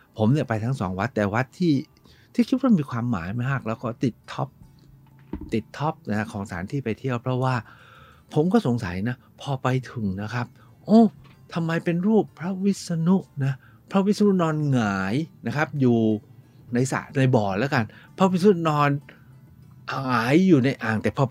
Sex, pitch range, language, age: male, 110-155 Hz, Thai, 60-79